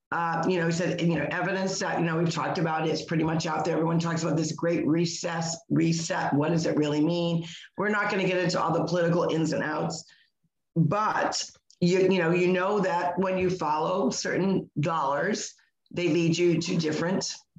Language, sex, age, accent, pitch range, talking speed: English, female, 50-69, American, 160-185 Hz, 210 wpm